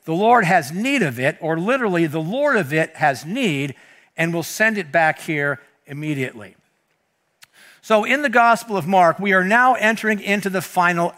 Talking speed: 180 wpm